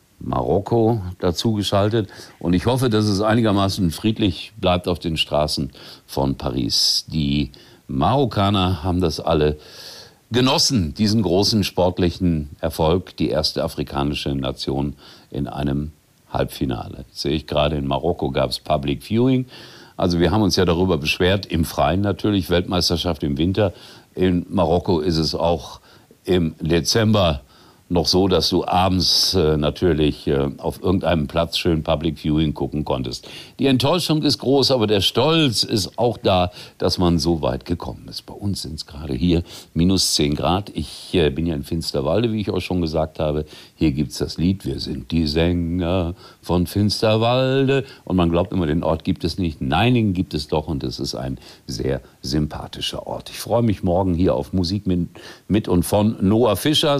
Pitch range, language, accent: 75-100 Hz, German, German